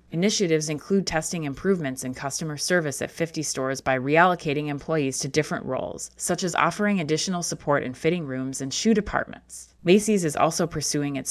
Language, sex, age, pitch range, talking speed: English, female, 20-39, 140-180 Hz, 170 wpm